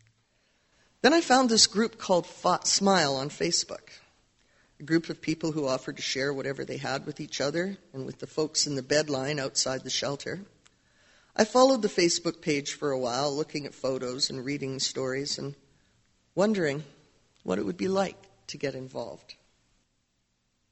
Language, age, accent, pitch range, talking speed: English, 50-69, American, 135-180 Hz, 170 wpm